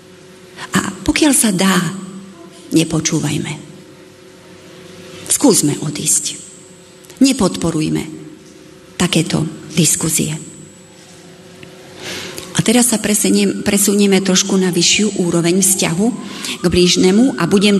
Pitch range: 170-195 Hz